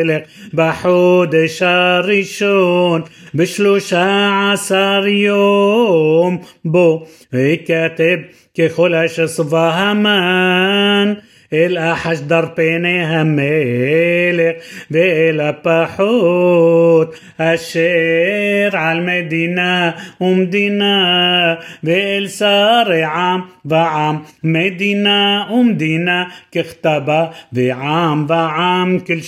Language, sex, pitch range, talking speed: Hebrew, male, 160-180 Hz, 45 wpm